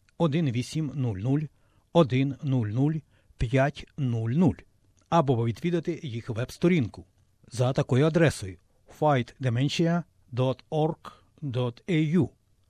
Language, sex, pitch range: Ukrainian, male, 110-155 Hz